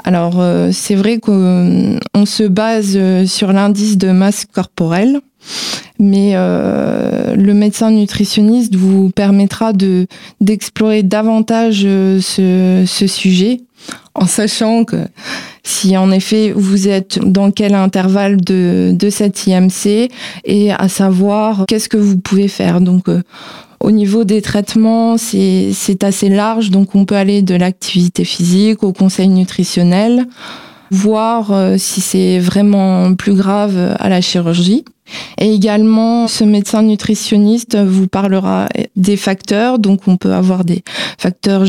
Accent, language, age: French, French, 20-39